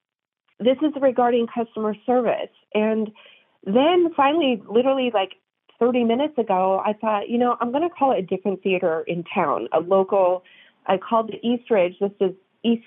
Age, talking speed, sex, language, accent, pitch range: 30-49, 175 wpm, female, English, American, 195-245 Hz